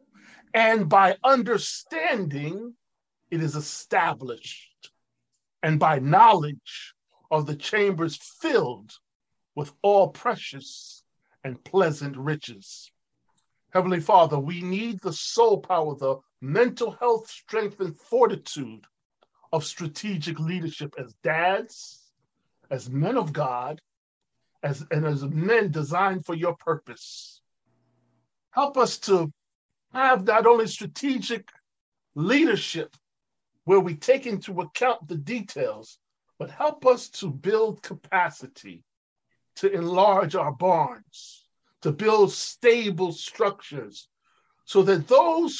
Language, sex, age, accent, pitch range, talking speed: English, male, 40-59, American, 150-220 Hz, 105 wpm